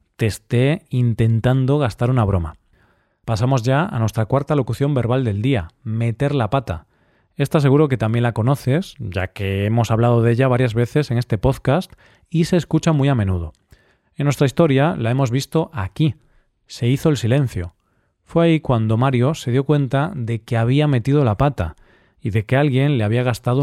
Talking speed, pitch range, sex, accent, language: 185 wpm, 110-140 Hz, male, Spanish, Spanish